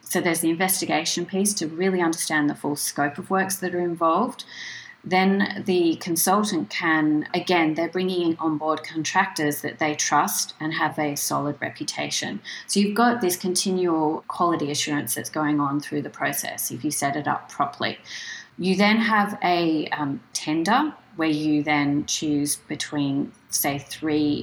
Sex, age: female, 30-49